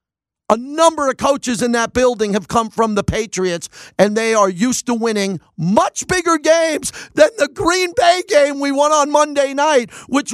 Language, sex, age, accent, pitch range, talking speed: English, male, 50-69, American, 185-255 Hz, 185 wpm